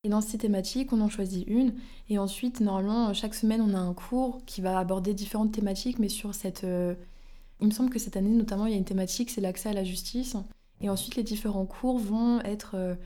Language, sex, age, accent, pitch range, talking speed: French, female, 20-39, French, 180-215 Hz, 225 wpm